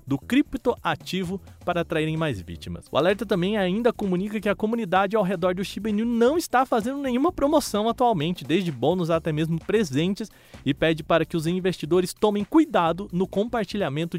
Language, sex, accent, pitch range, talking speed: Portuguese, male, Brazilian, 160-230 Hz, 165 wpm